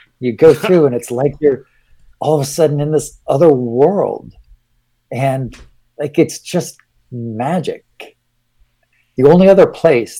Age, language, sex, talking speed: 50-69, English, male, 140 wpm